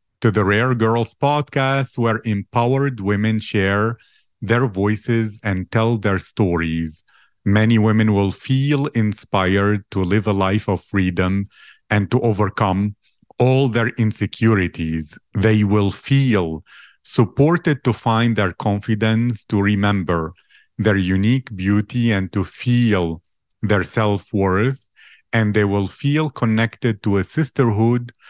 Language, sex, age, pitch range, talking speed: English, male, 40-59, 100-120 Hz, 125 wpm